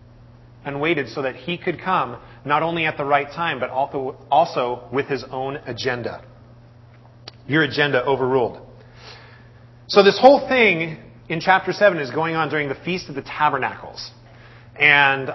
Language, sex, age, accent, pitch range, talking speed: English, male, 30-49, American, 120-155 Hz, 155 wpm